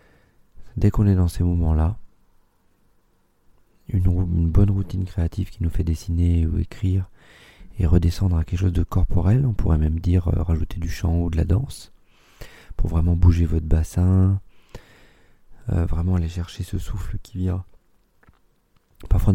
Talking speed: 155 wpm